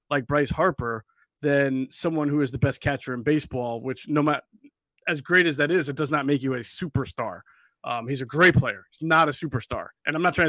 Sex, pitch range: male, 140-165 Hz